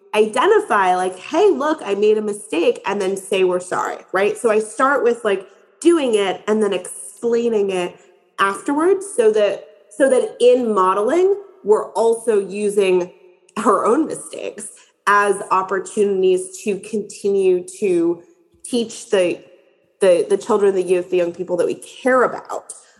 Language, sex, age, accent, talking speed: English, female, 30-49, American, 150 wpm